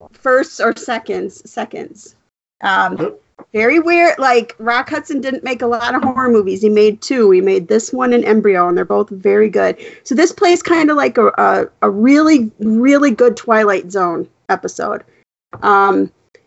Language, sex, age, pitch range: English, female, 40-59, 215-275 Hz